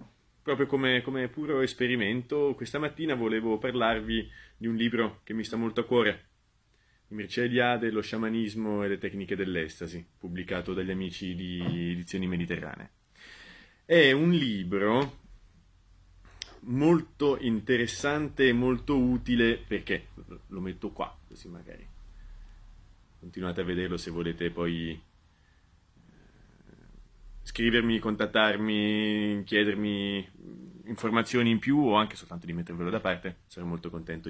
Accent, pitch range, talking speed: native, 90-120 Hz, 120 wpm